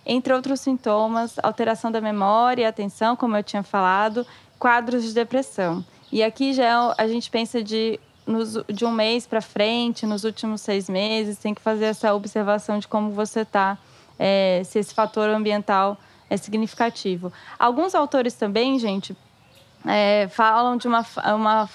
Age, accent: 10-29, Brazilian